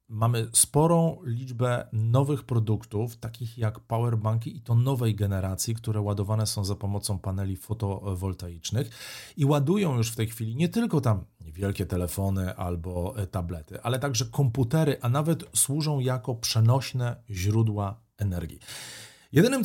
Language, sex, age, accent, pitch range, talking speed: Polish, male, 40-59, native, 105-135 Hz, 130 wpm